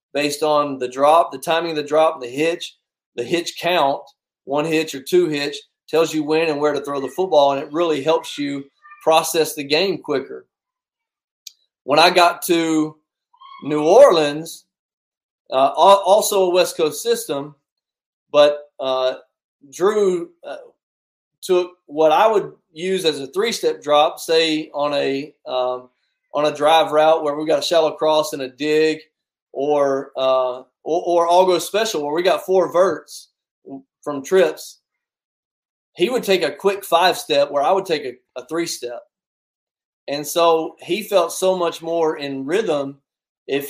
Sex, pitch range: male, 145-175 Hz